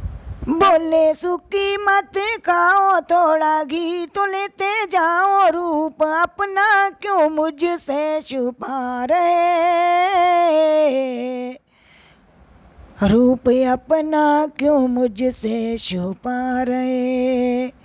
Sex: female